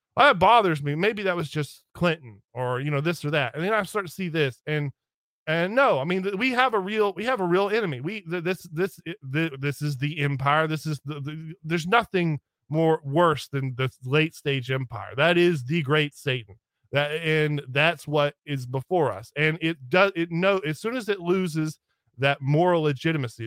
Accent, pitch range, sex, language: American, 145-185 Hz, male, English